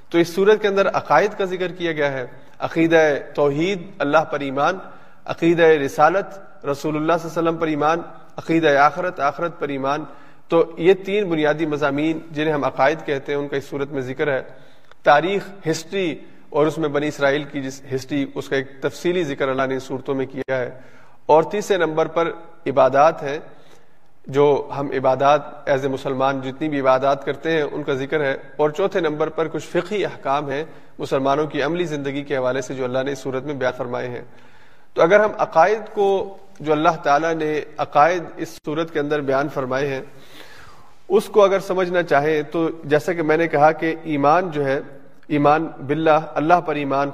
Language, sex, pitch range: Urdu, male, 140-165 Hz